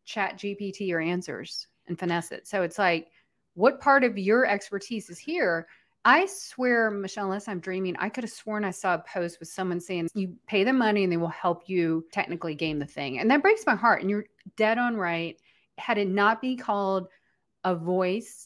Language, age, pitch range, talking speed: English, 30-49, 175-215 Hz, 210 wpm